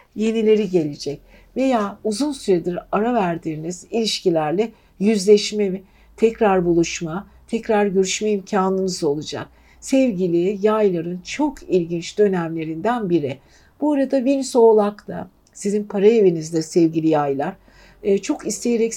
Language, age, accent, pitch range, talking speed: Turkish, 60-79, native, 170-215 Hz, 100 wpm